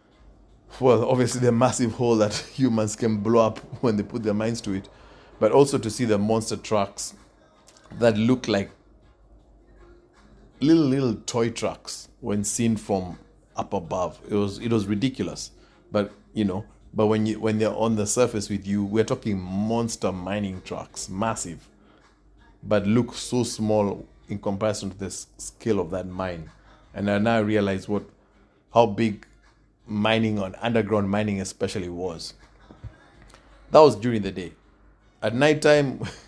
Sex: male